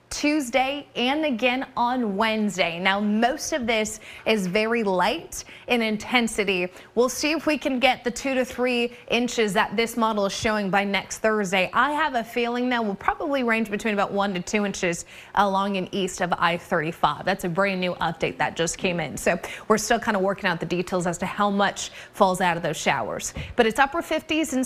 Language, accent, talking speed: English, American, 205 wpm